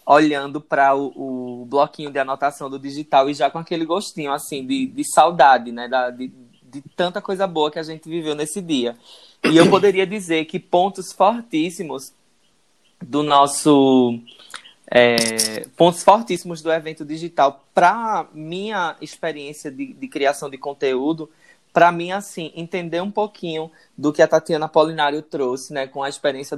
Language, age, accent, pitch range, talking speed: Portuguese, 20-39, Brazilian, 140-175 Hz, 160 wpm